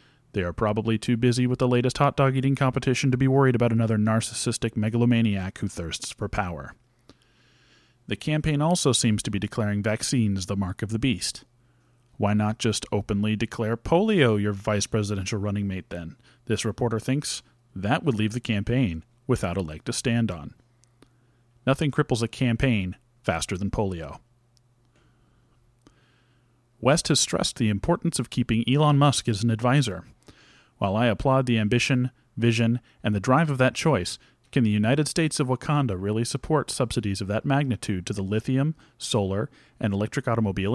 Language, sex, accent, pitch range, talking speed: English, male, American, 110-130 Hz, 165 wpm